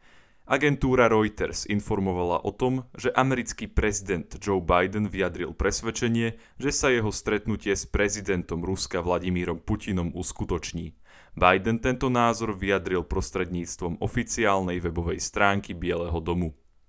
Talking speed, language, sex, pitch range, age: 115 wpm, Slovak, male, 90-110 Hz, 20-39